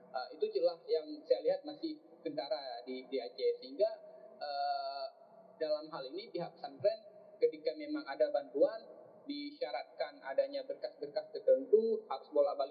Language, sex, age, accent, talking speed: Indonesian, male, 20-39, native, 150 wpm